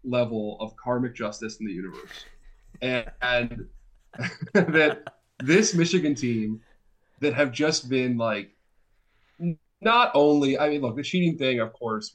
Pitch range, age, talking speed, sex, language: 105-125 Hz, 20-39, 140 wpm, male, English